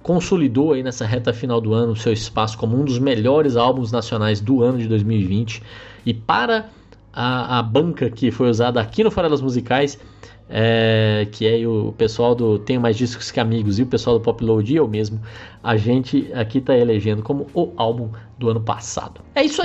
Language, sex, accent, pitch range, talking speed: Portuguese, male, Brazilian, 110-145 Hz, 200 wpm